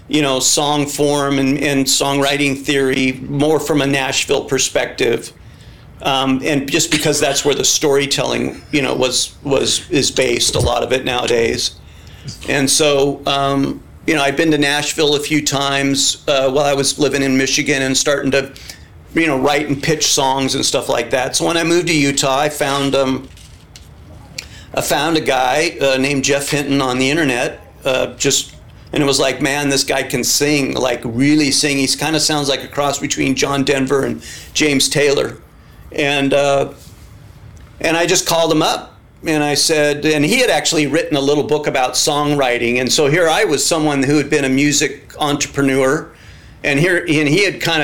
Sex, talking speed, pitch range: male, 190 wpm, 135-150 Hz